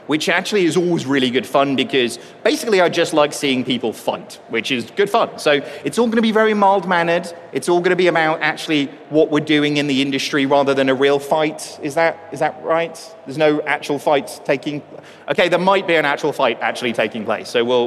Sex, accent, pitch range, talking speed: male, British, 135-165 Hz, 230 wpm